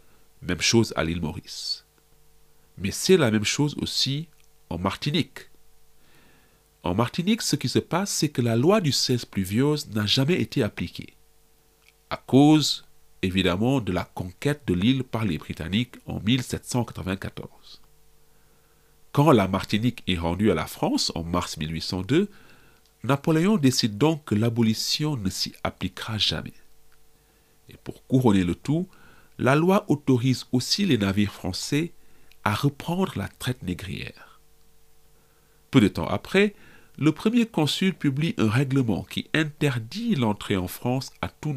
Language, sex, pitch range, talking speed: English, male, 95-145 Hz, 140 wpm